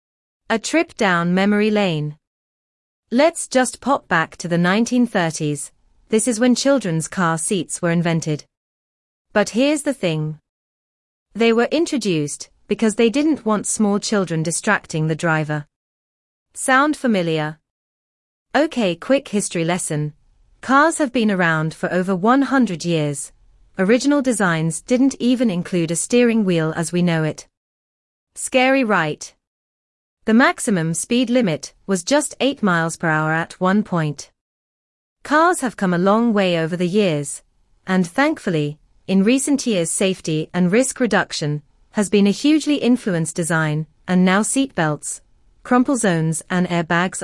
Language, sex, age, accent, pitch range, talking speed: English, female, 30-49, British, 160-240 Hz, 135 wpm